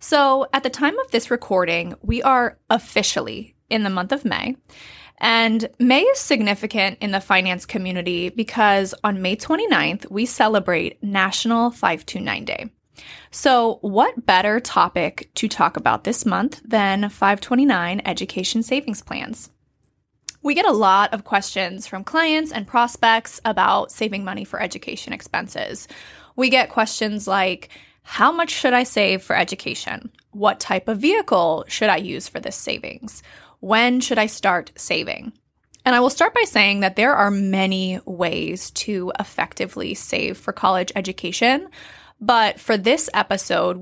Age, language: 20-39, English